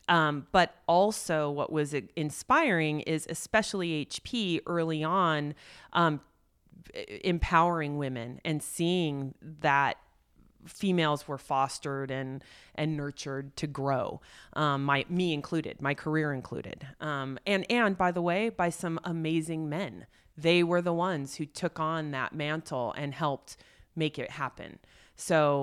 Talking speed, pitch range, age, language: 135 wpm, 145-175 Hz, 30-49, English